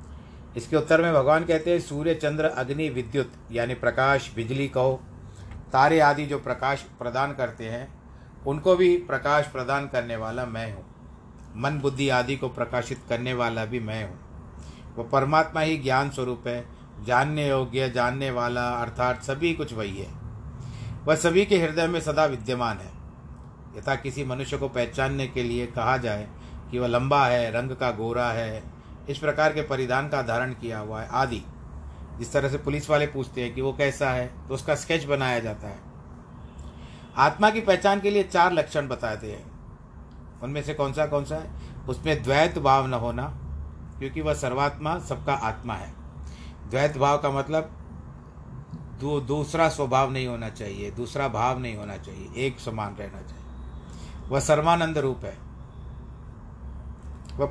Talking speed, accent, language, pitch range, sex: 165 wpm, native, Hindi, 105-145 Hz, male